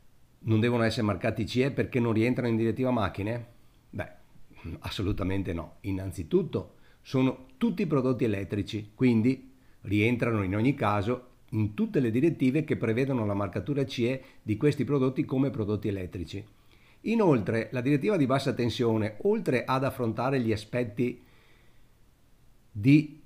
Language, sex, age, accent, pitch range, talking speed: Italian, male, 50-69, native, 105-140 Hz, 130 wpm